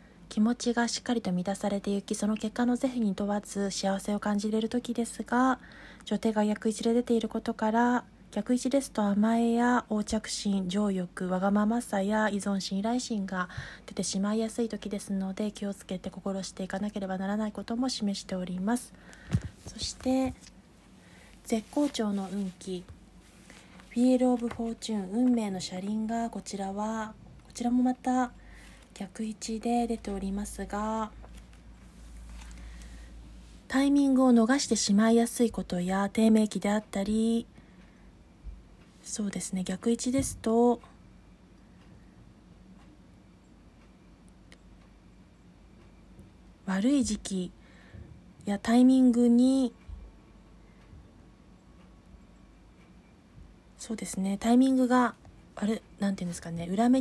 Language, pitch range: Japanese, 195-235 Hz